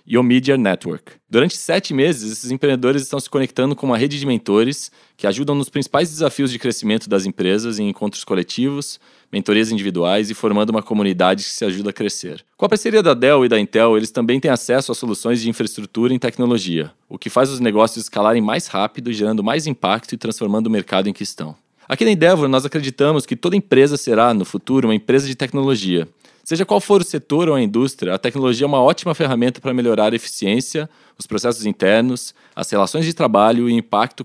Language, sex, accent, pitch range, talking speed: Portuguese, male, Brazilian, 110-140 Hz, 210 wpm